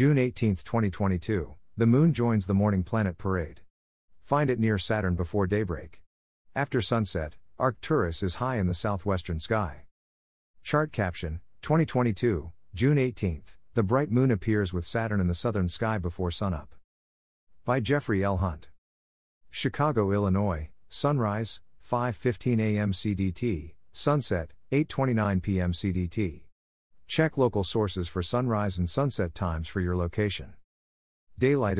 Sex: male